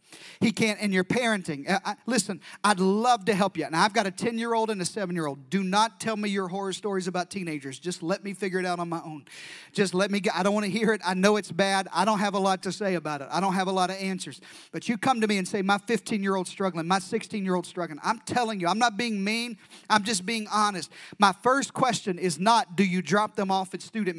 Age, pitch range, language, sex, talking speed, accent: 40-59, 180-230 Hz, English, male, 280 wpm, American